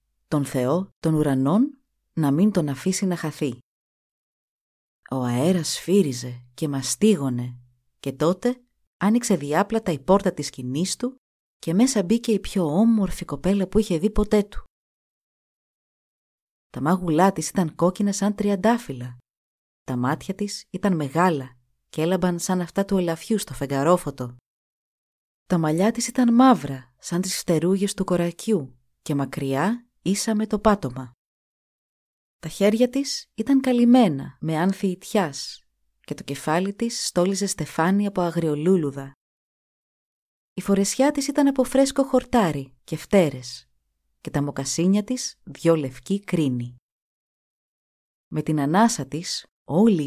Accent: native